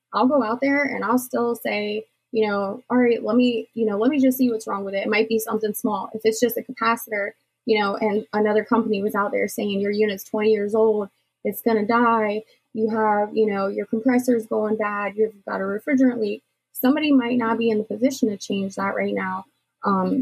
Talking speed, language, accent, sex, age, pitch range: 230 wpm, English, American, female, 20-39, 210-235 Hz